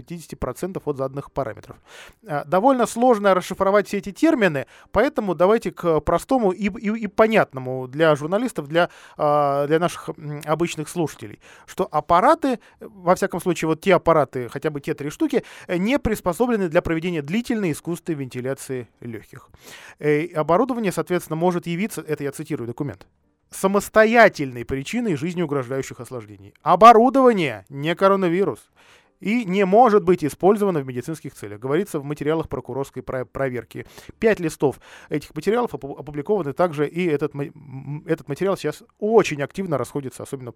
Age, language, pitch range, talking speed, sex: 20-39, Russian, 140-195 Hz, 135 wpm, male